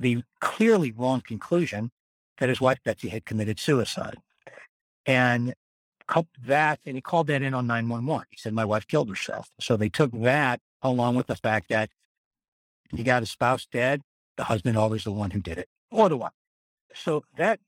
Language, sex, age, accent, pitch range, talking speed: English, male, 60-79, American, 115-150 Hz, 185 wpm